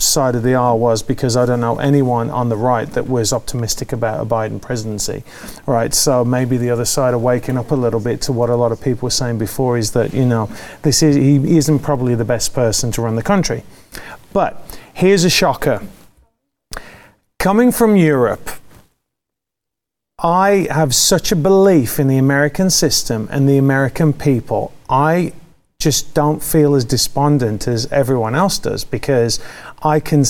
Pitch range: 125-155 Hz